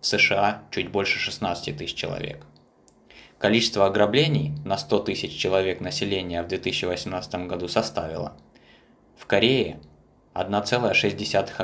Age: 20-39